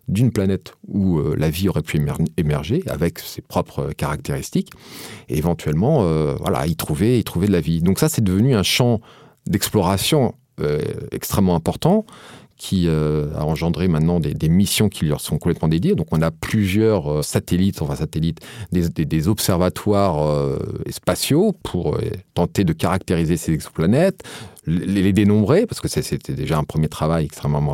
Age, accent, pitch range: 40-59, French, 90-130 Hz